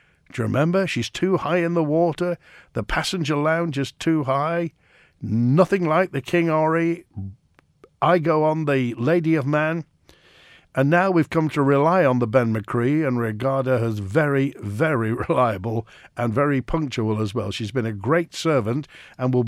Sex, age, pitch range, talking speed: male, 50-69, 125-165 Hz, 175 wpm